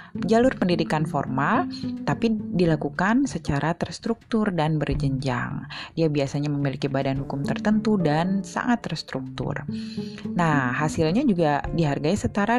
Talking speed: 110 wpm